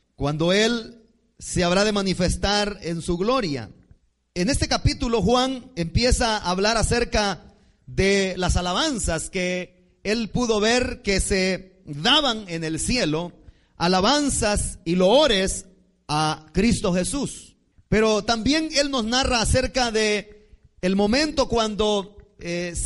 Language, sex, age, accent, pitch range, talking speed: Spanish, male, 30-49, Mexican, 175-235 Hz, 125 wpm